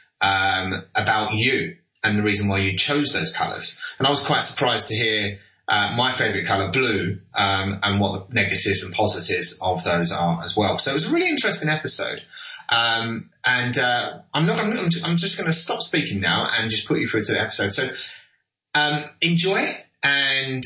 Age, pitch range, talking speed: 20-39, 105-140 Hz, 200 wpm